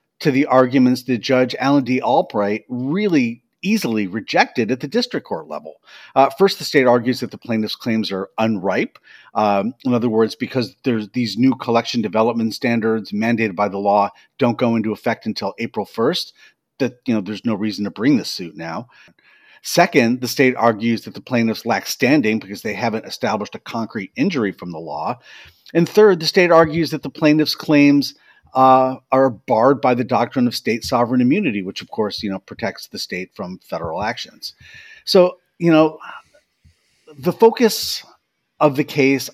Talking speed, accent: 180 wpm, American